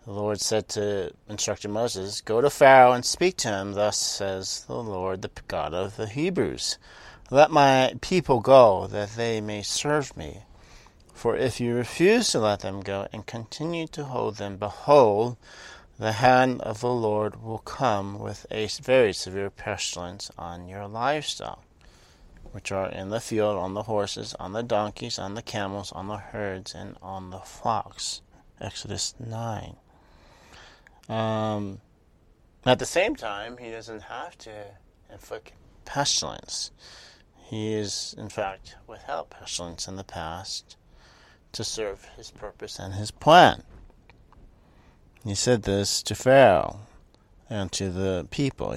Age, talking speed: 40-59, 145 wpm